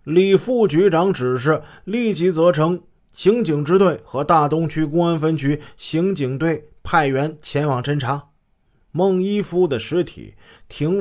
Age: 20-39